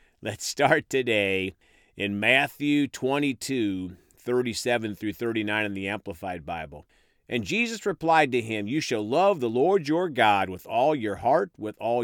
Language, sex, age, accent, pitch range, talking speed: English, male, 40-59, American, 105-165 Hz, 155 wpm